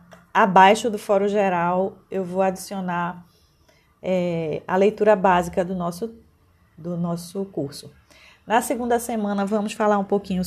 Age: 20-39